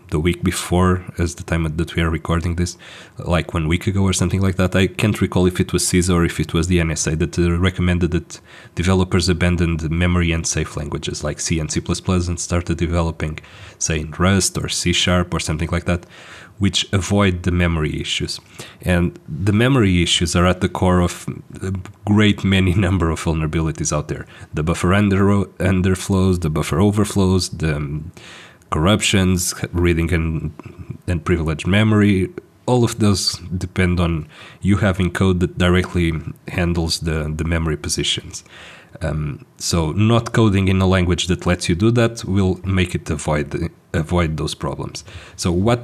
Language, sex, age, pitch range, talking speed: English, male, 30-49, 85-95 Hz, 175 wpm